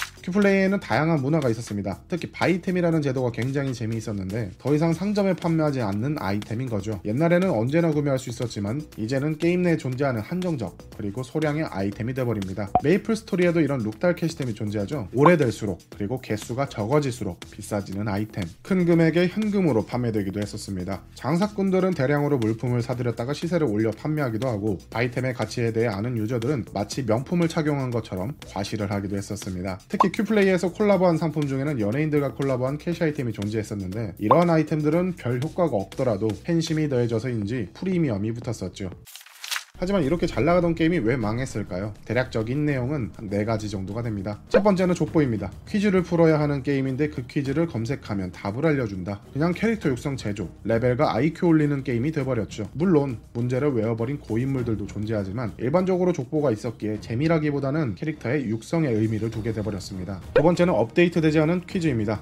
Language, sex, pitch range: Korean, male, 110-160 Hz